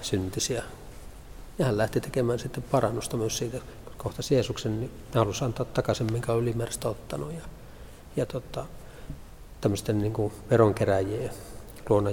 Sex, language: male, Finnish